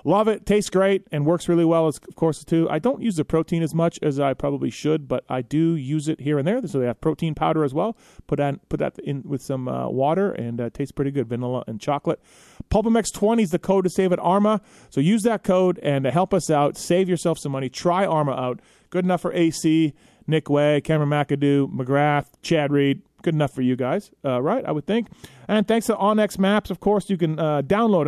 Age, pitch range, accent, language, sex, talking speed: 30-49, 140-185 Hz, American, English, male, 240 wpm